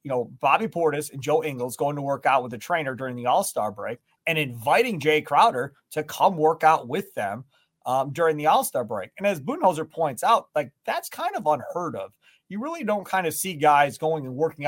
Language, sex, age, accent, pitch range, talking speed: English, male, 30-49, American, 140-170 Hz, 220 wpm